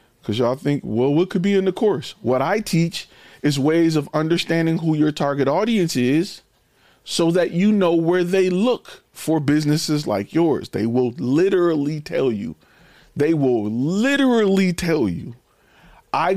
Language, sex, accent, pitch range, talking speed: English, male, American, 130-175 Hz, 160 wpm